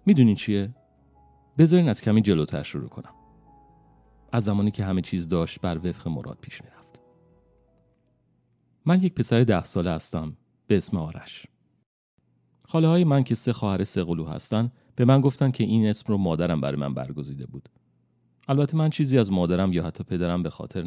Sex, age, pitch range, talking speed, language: male, 40-59, 80-115 Hz, 170 wpm, Persian